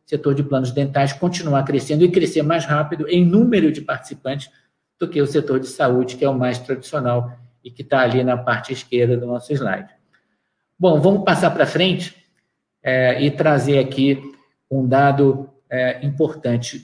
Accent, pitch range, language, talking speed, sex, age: Brazilian, 135-160 Hz, Portuguese, 165 wpm, male, 50-69